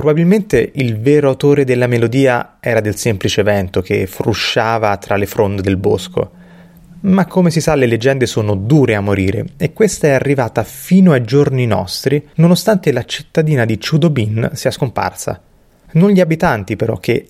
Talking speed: 165 wpm